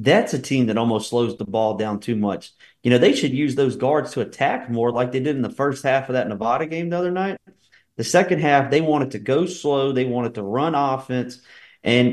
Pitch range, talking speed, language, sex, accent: 110-140 Hz, 240 wpm, English, male, American